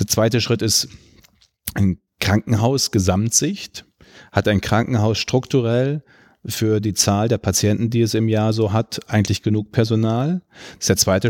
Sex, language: male, German